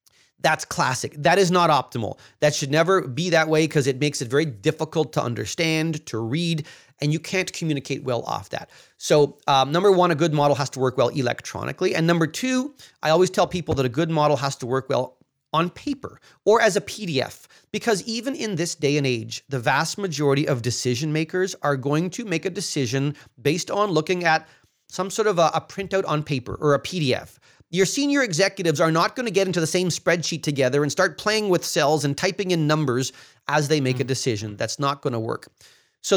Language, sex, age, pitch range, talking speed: English, male, 30-49, 135-180 Hz, 215 wpm